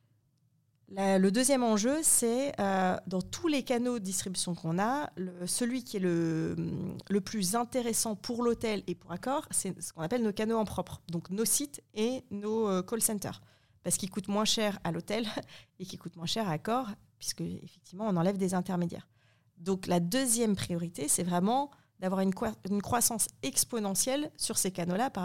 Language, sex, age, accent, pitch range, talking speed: French, female, 30-49, French, 165-205 Hz, 175 wpm